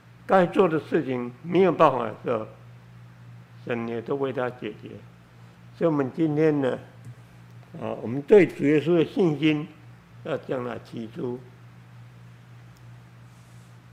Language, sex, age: Chinese, male, 60-79